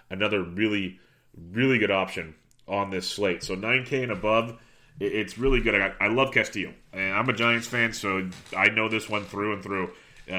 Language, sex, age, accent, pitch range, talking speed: English, male, 30-49, American, 95-115 Hz, 195 wpm